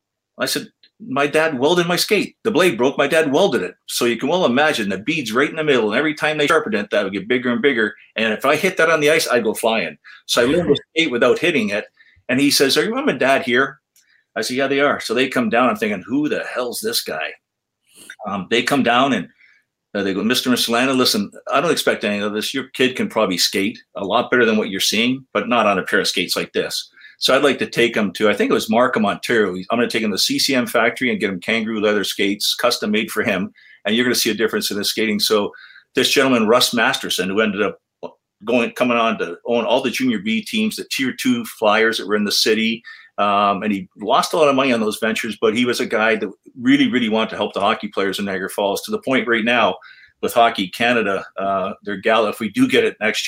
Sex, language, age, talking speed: male, English, 50-69, 265 wpm